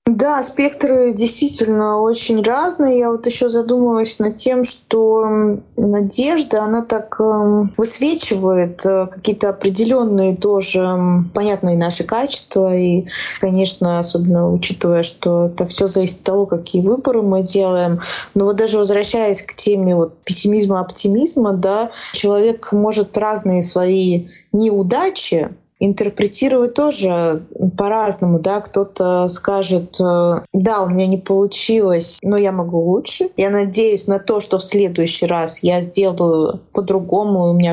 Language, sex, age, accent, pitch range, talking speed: Russian, female, 20-39, native, 185-230 Hz, 125 wpm